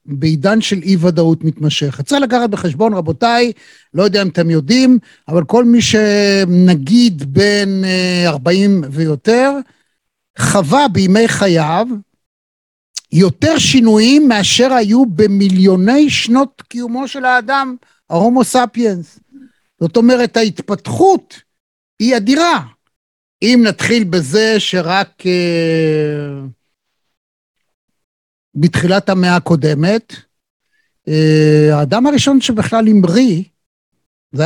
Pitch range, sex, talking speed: 175-245 Hz, male, 90 wpm